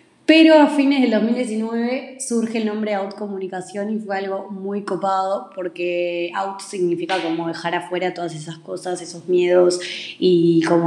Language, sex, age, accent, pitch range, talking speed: Spanish, female, 20-39, Argentinian, 175-210 Hz, 155 wpm